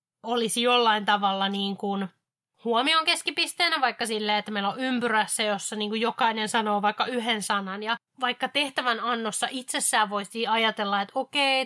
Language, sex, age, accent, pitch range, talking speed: Finnish, female, 20-39, native, 205-250 Hz, 155 wpm